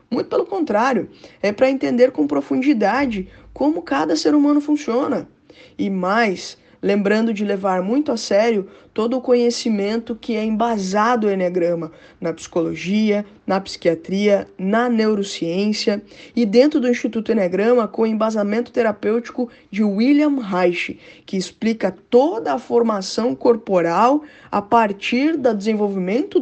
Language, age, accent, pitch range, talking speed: Portuguese, 20-39, Brazilian, 195-245 Hz, 130 wpm